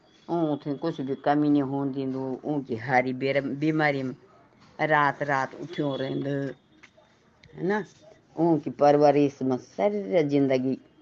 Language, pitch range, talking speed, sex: Hindi, 140-175 Hz, 105 wpm, female